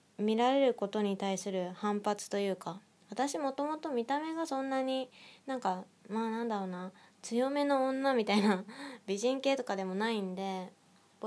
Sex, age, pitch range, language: female, 20-39, 190-215 Hz, Japanese